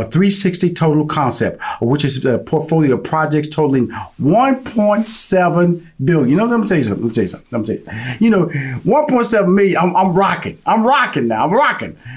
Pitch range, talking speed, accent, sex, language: 140-185 Hz, 200 wpm, American, male, English